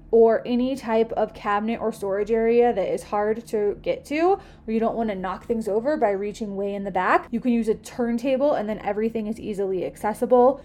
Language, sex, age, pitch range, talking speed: English, female, 20-39, 215-260 Hz, 220 wpm